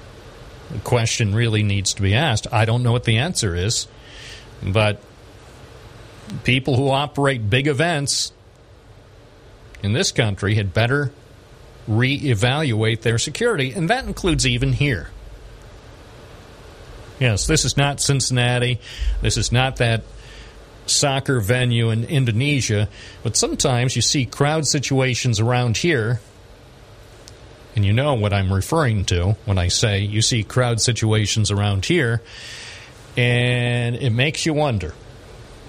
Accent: American